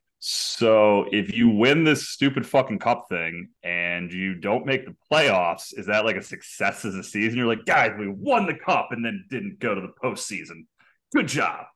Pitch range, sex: 95-130 Hz, male